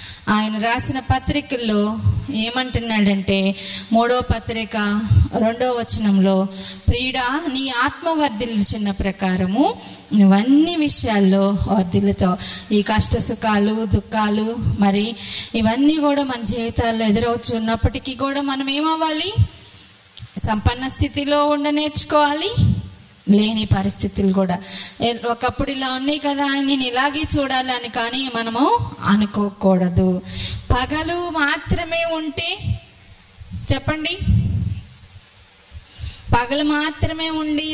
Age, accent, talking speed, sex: 20-39, native, 85 wpm, female